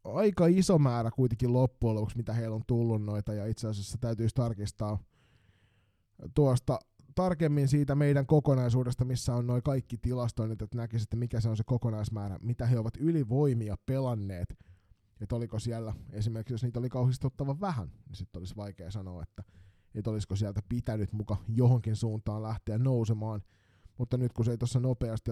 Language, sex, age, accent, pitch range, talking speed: Finnish, male, 20-39, native, 110-130 Hz, 165 wpm